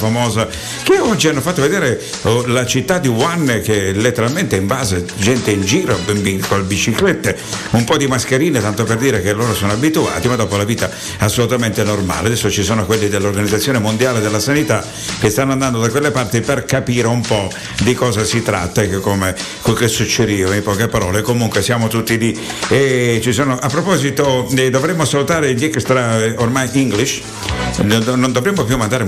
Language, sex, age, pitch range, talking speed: Italian, male, 60-79, 105-130 Hz, 175 wpm